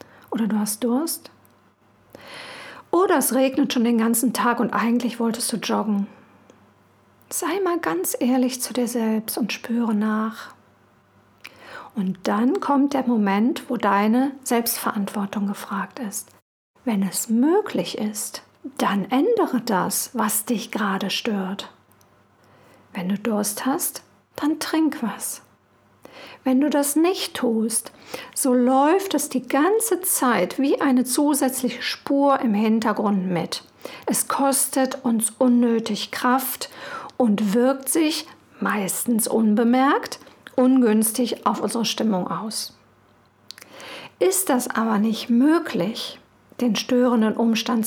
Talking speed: 120 wpm